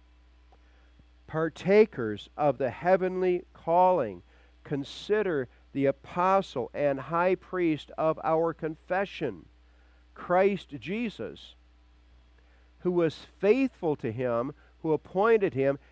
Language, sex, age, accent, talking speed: English, male, 50-69, American, 90 wpm